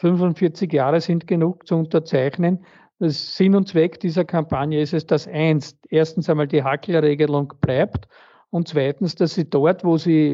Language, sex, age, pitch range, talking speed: German, male, 50-69, 150-195 Hz, 170 wpm